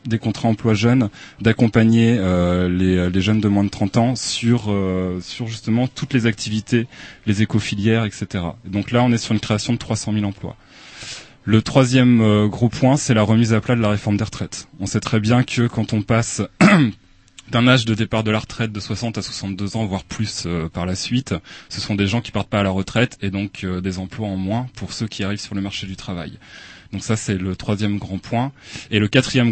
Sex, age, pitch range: male, 20-39, 95-115 Hz